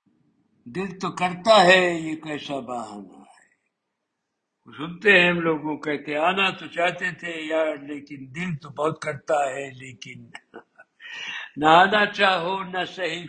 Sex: male